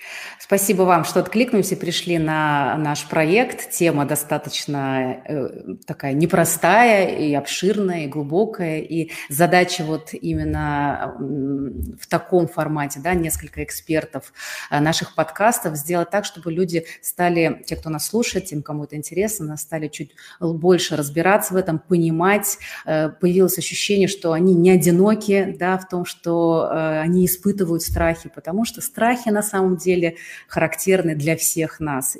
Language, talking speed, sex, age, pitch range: Russian, 130 wpm, female, 30-49, 160-190 Hz